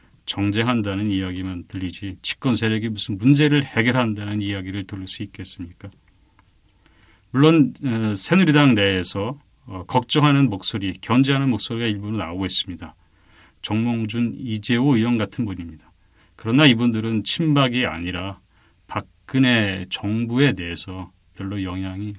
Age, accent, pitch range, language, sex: 40-59, native, 95-125 Hz, Korean, male